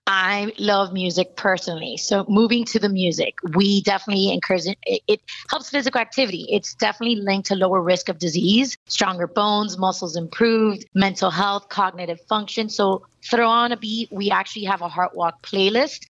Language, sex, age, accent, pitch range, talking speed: English, female, 30-49, American, 185-215 Hz, 170 wpm